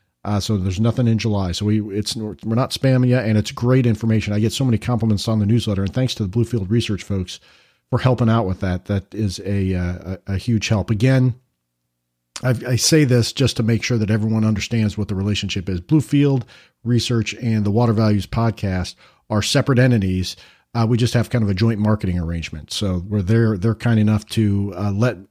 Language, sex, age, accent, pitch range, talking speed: English, male, 40-59, American, 105-125 Hz, 210 wpm